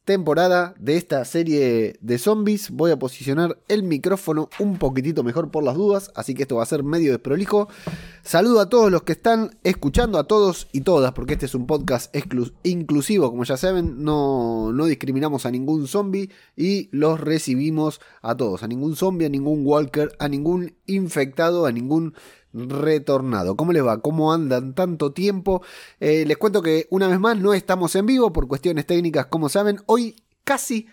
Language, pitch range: Spanish, 135-195 Hz